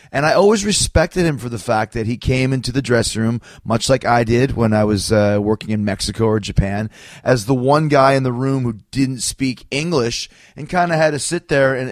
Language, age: English, 30-49